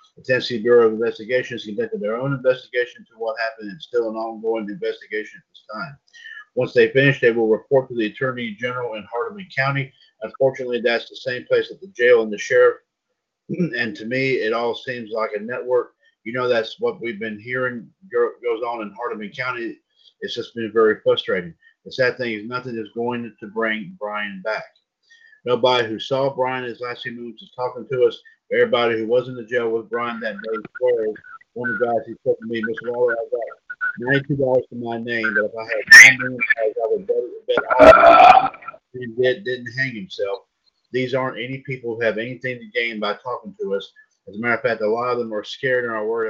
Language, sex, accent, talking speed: English, male, American, 215 wpm